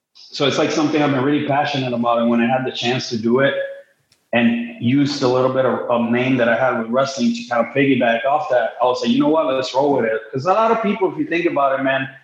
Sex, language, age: male, English, 30-49